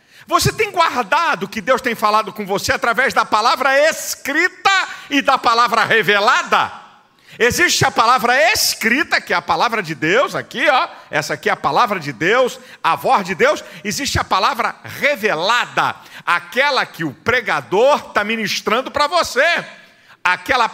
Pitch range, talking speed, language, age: 170-270 Hz, 155 wpm, Portuguese, 50-69